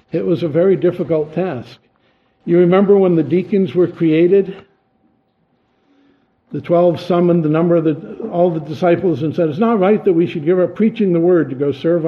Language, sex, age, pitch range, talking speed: English, male, 60-79, 145-185 Hz, 190 wpm